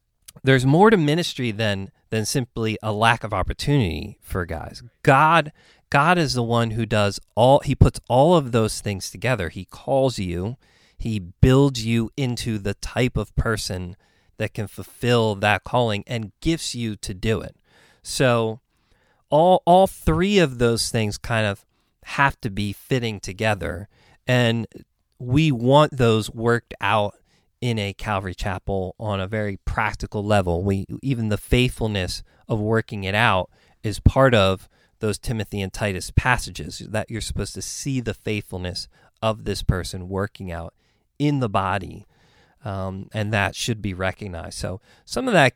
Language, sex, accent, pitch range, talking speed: English, male, American, 100-120 Hz, 160 wpm